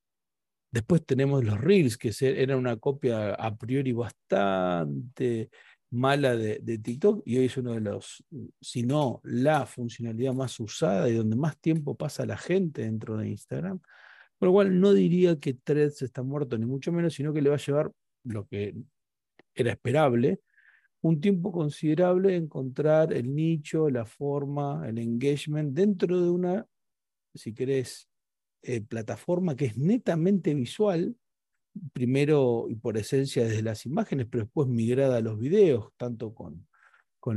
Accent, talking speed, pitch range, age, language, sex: Argentinian, 155 wpm, 120-155 Hz, 40-59, Spanish, male